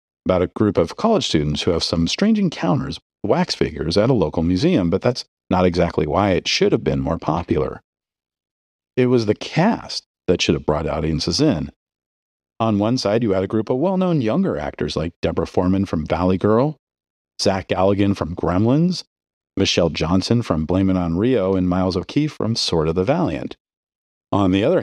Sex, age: male, 40-59